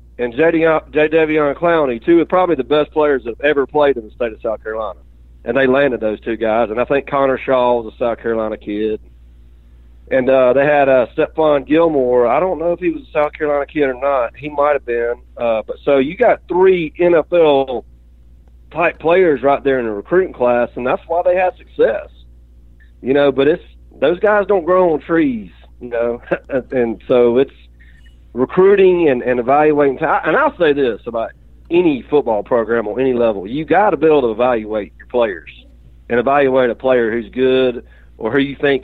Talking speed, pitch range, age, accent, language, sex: 200 wpm, 110-160 Hz, 40-59, American, English, male